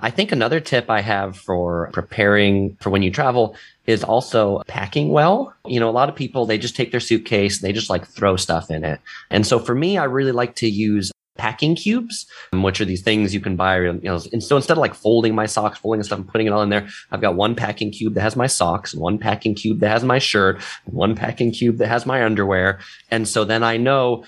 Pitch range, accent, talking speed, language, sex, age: 95-125 Hz, American, 245 wpm, English, male, 30-49